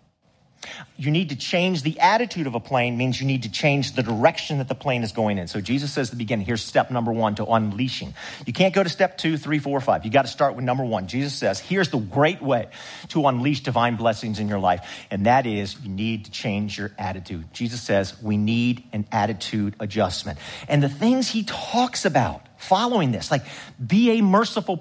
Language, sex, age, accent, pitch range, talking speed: English, male, 50-69, American, 115-185 Hz, 220 wpm